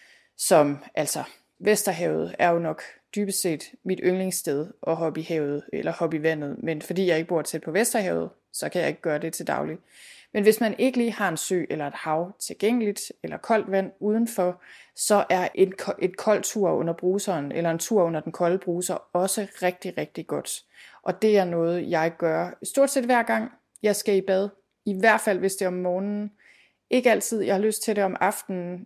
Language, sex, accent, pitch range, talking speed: Danish, female, native, 180-210 Hz, 200 wpm